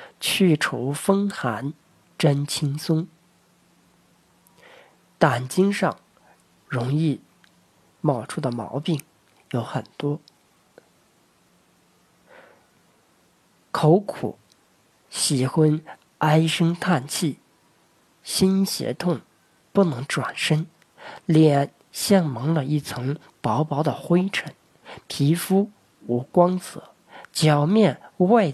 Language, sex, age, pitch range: Chinese, male, 40-59, 145-190 Hz